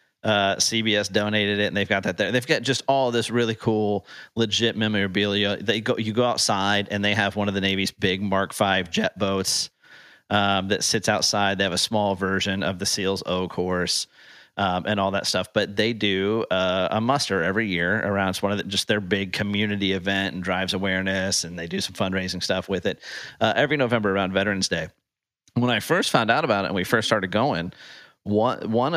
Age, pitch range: 30-49, 95-115 Hz